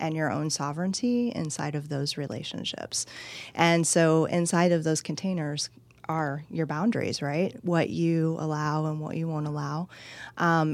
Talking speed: 150 wpm